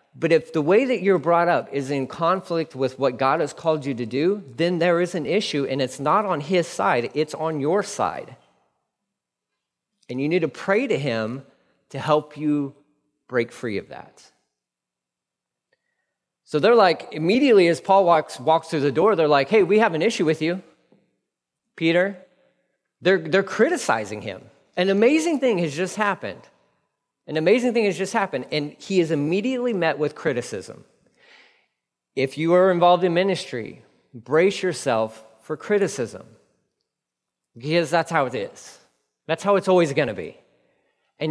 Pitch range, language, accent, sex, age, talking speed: 145-195 Hz, English, American, male, 40-59, 165 wpm